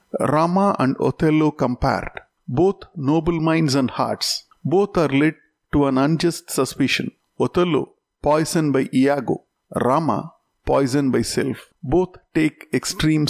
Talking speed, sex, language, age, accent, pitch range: 120 wpm, male, Tamil, 50-69, native, 140-170 Hz